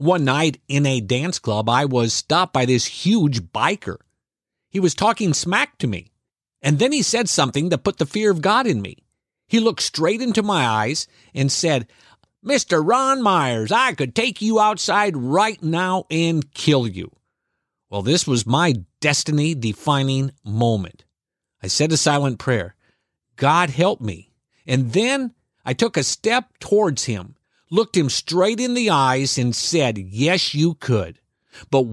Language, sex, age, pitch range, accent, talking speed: English, male, 50-69, 125-185 Hz, American, 165 wpm